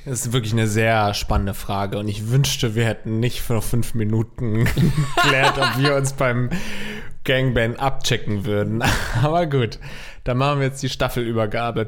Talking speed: 160 wpm